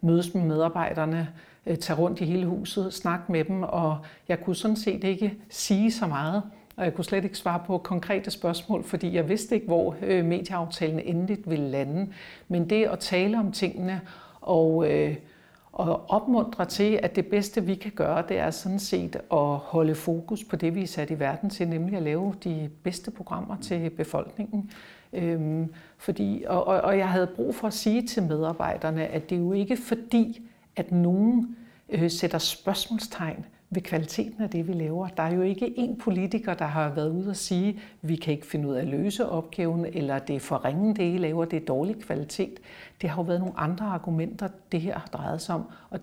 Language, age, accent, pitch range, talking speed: Danish, 60-79, native, 165-200 Hz, 200 wpm